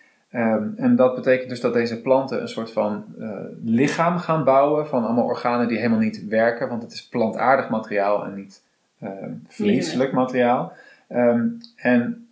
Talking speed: 155 wpm